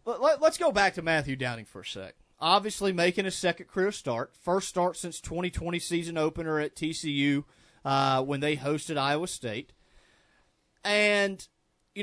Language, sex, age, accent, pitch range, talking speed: English, male, 30-49, American, 145-205 Hz, 155 wpm